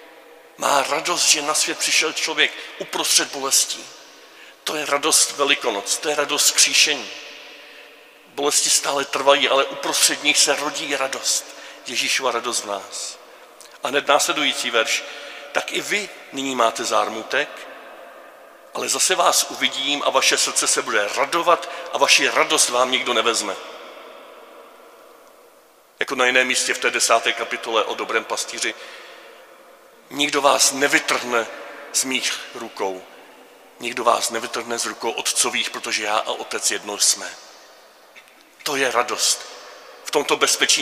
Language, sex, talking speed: Czech, male, 135 wpm